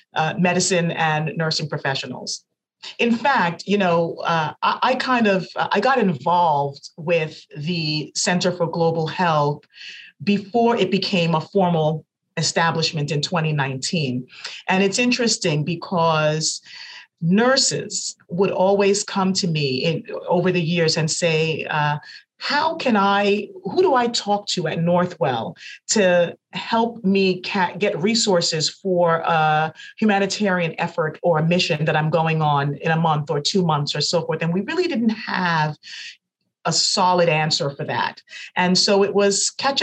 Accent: American